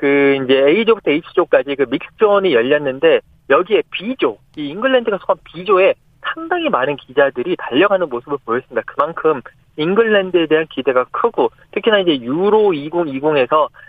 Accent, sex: native, male